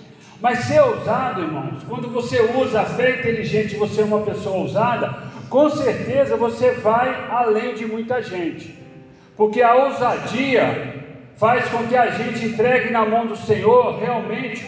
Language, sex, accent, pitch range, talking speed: Portuguese, male, Brazilian, 215-265 Hz, 150 wpm